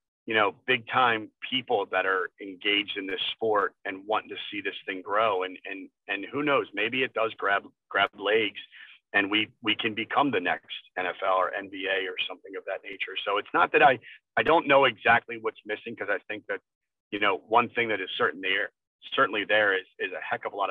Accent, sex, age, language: American, male, 40-59, English